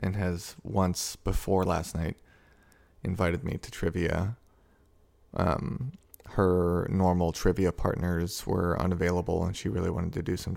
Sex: male